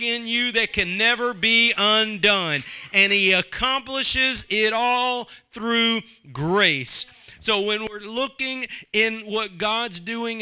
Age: 40-59